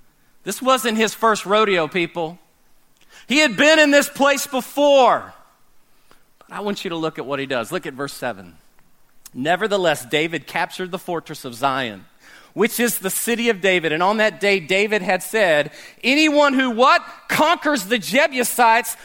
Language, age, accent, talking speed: English, 40-59, American, 165 wpm